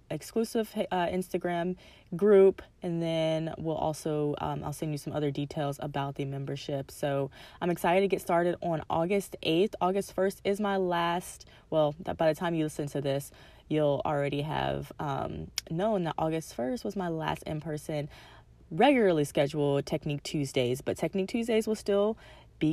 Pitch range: 145-185 Hz